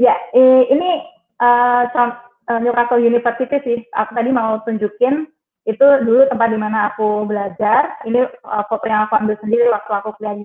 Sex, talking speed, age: female, 160 wpm, 20-39